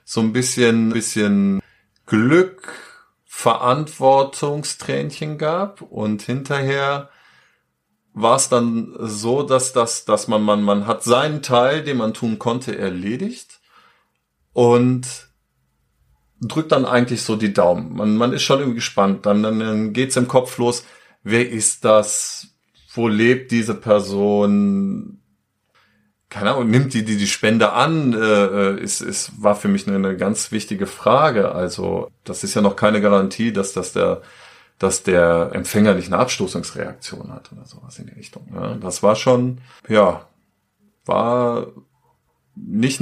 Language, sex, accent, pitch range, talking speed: German, male, German, 100-125 Hz, 145 wpm